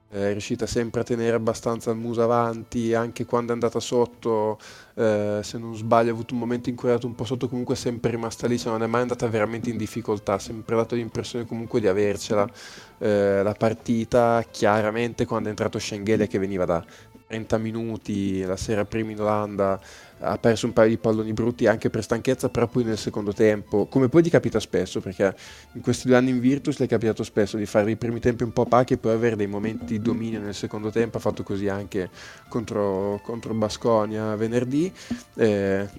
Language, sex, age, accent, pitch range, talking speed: Italian, male, 20-39, native, 110-120 Hz, 205 wpm